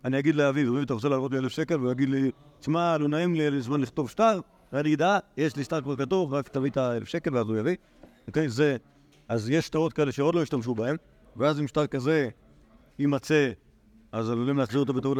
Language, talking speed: Hebrew, 220 wpm